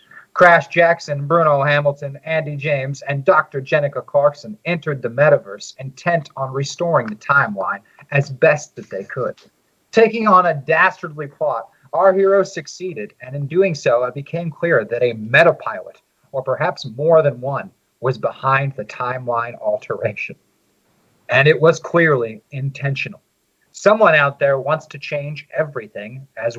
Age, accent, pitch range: 40-59, American, 135-170 Hz